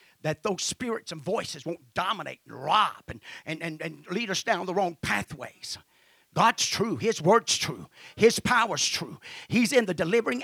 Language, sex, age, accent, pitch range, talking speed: English, male, 40-59, American, 215-335 Hz, 180 wpm